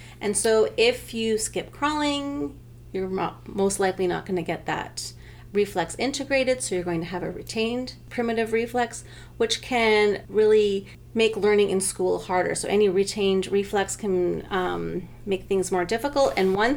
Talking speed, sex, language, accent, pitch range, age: 160 wpm, female, English, American, 180-225 Hz, 30-49